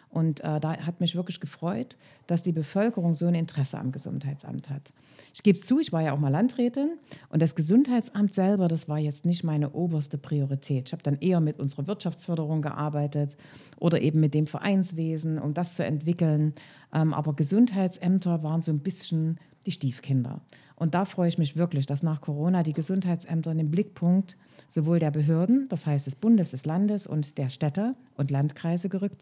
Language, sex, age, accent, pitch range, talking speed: German, female, 40-59, German, 150-185 Hz, 185 wpm